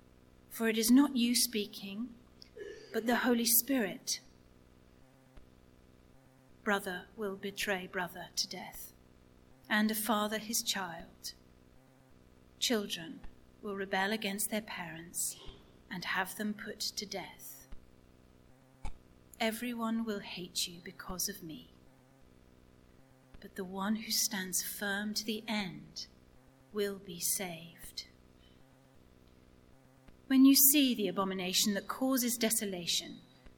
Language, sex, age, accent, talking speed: English, female, 40-59, British, 105 wpm